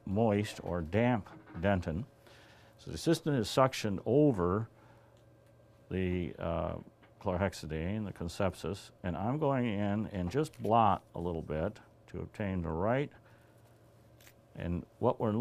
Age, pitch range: 60-79, 90-115 Hz